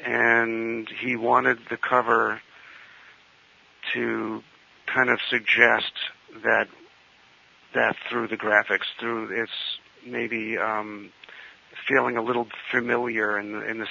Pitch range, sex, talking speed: 100-115 Hz, male, 110 wpm